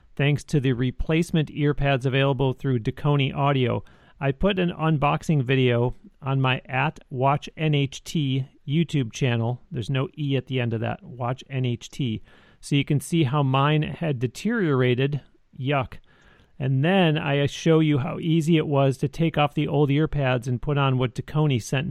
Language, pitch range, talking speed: English, 130-155 Hz, 165 wpm